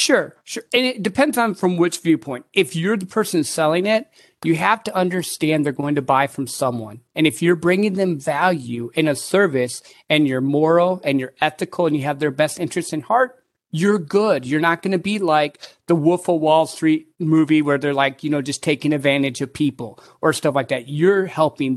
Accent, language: American, English